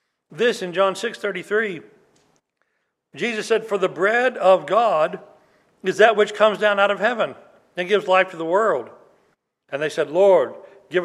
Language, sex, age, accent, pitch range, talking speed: English, male, 60-79, American, 165-225 Hz, 165 wpm